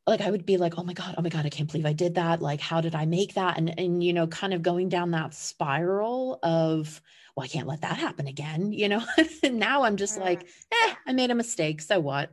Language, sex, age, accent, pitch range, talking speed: English, female, 30-49, American, 155-180 Hz, 270 wpm